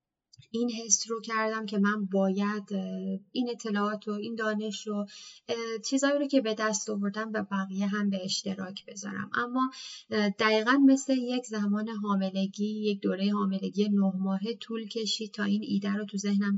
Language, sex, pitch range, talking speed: Persian, female, 200-220 Hz, 160 wpm